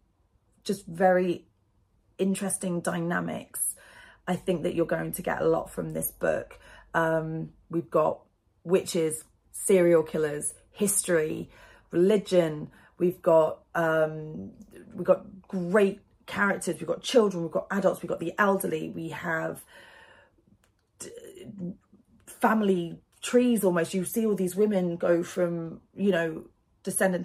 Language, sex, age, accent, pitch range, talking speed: English, female, 30-49, British, 170-205 Hz, 125 wpm